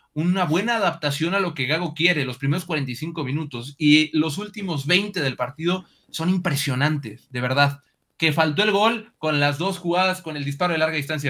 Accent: Mexican